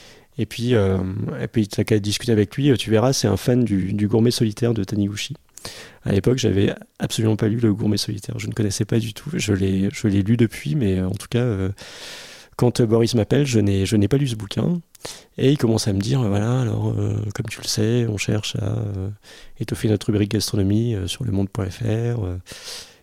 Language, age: French, 30-49